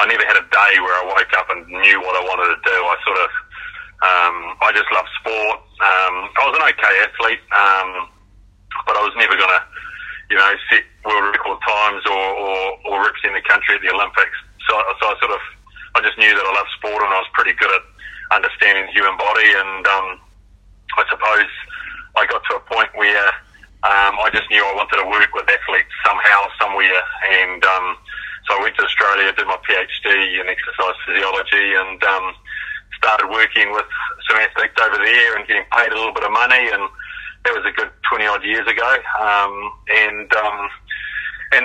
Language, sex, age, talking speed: English, male, 30-49, 200 wpm